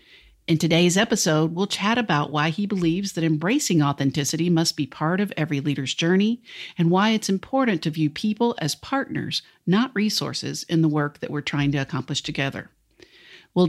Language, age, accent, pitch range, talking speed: English, 50-69, American, 150-205 Hz, 175 wpm